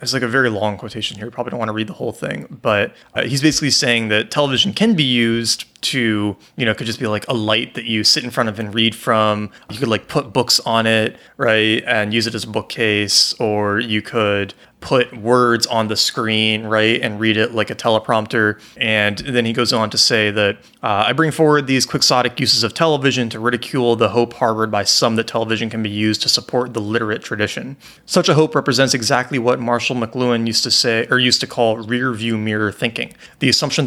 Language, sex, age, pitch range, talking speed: English, male, 30-49, 110-130 Hz, 225 wpm